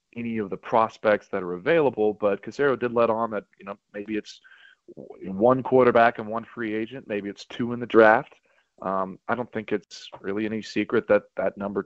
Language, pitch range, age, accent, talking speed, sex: English, 100-120 Hz, 30-49, American, 200 wpm, male